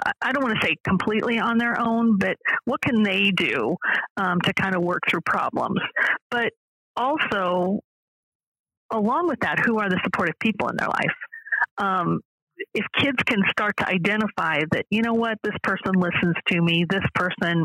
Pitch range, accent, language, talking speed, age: 180-225 Hz, American, English, 175 wpm, 40-59